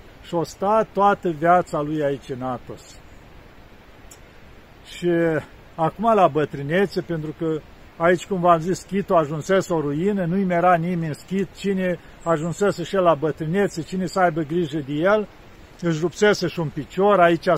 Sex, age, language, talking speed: male, 50-69, Romanian, 150 wpm